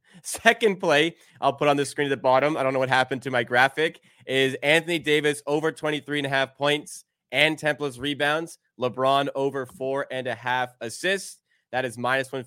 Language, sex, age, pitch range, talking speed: English, male, 20-39, 125-150 Hz, 205 wpm